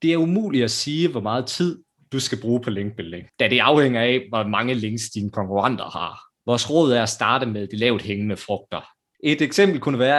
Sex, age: male, 30-49